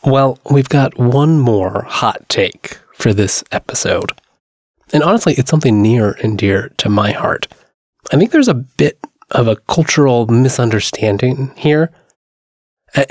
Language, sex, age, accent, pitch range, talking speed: English, male, 20-39, American, 115-155 Hz, 140 wpm